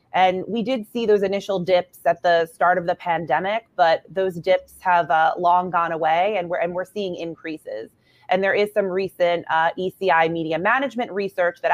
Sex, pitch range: female, 170-205 Hz